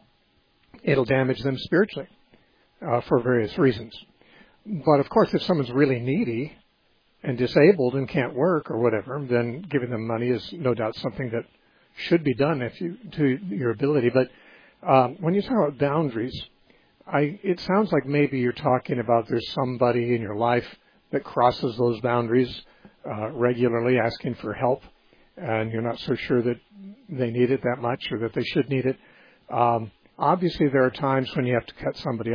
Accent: American